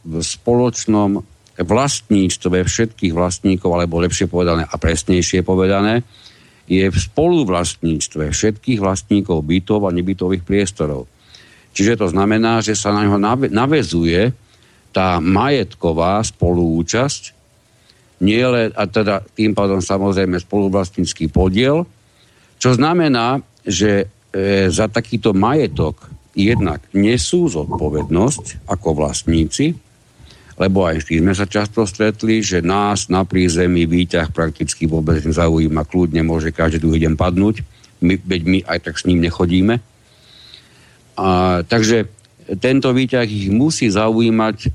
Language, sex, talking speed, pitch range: Slovak, male, 120 wpm, 90-110 Hz